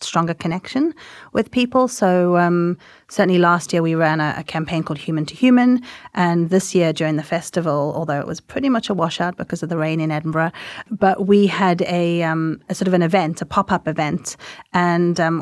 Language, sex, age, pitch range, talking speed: English, female, 30-49, 165-190 Hz, 200 wpm